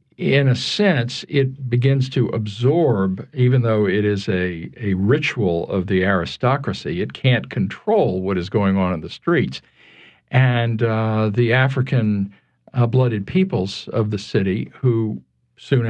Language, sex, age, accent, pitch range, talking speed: English, male, 50-69, American, 100-130 Hz, 145 wpm